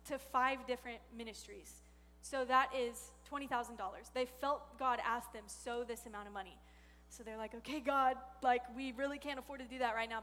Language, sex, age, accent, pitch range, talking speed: English, female, 10-29, American, 235-280 Hz, 195 wpm